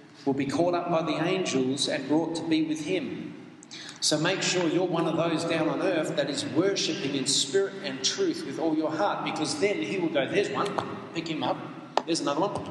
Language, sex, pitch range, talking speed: English, male, 135-190 Hz, 220 wpm